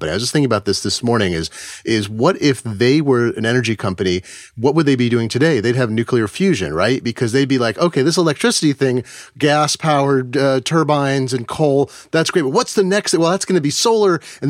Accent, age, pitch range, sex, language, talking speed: American, 30-49, 120-160 Hz, male, English, 220 wpm